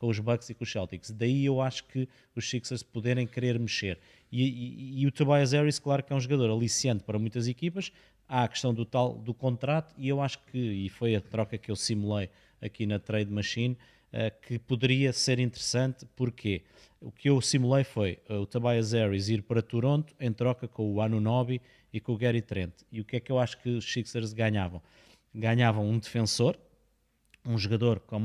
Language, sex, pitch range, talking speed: Portuguese, male, 110-130 Hz, 205 wpm